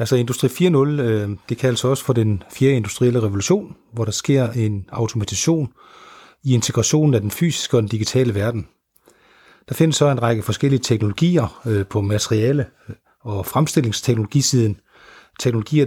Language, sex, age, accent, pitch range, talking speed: Danish, male, 30-49, native, 110-140 Hz, 150 wpm